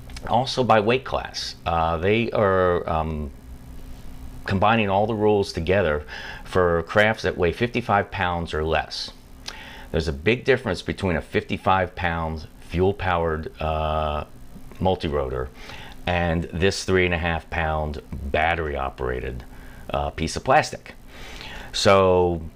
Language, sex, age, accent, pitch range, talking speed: English, male, 40-59, American, 75-95 Hz, 125 wpm